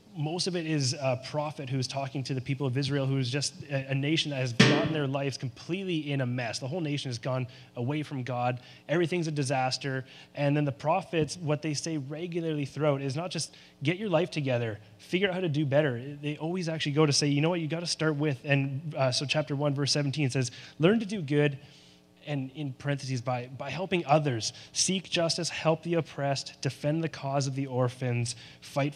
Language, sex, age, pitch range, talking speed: English, male, 20-39, 125-150 Hz, 215 wpm